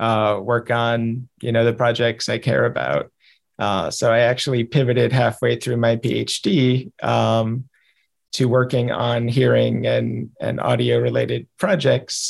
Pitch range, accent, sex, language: 115-130 Hz, American, male, English